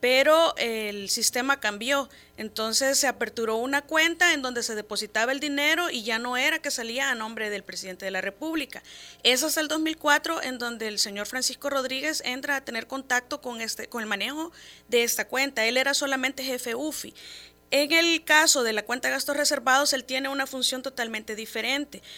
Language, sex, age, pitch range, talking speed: Spanish, female, 30-49, 225-280 Hz, 190 wpm